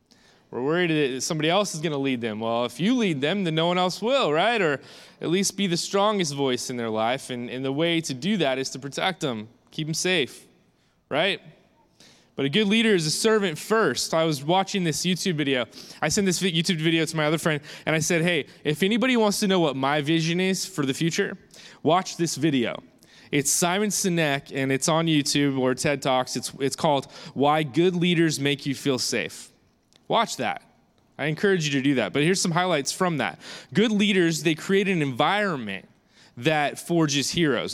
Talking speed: 210 wpm